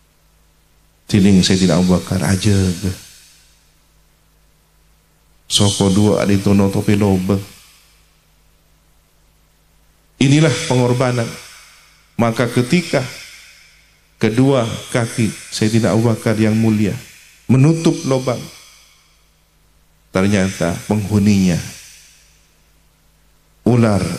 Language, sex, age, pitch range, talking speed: Indonesian, male, 50-69, 85-125 Hz, 60 wpm